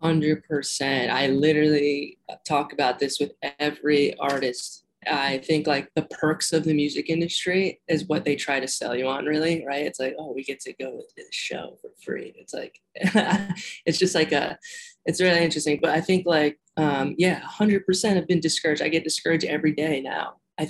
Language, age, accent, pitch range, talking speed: English, 20-39, American, 145-170 Hz, 200 wpm